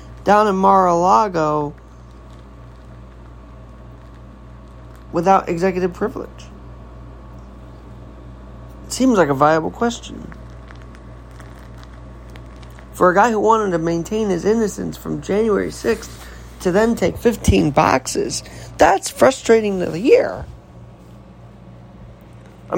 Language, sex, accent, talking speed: English, male, American, 95 wpm